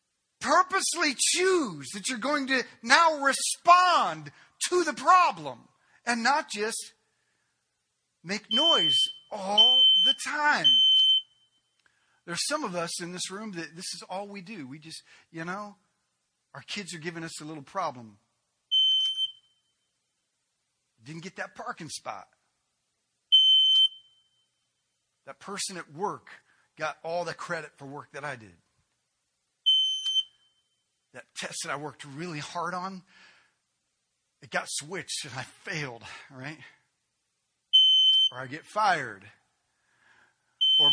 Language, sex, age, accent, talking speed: English, male, 40-59, American, 120 wpm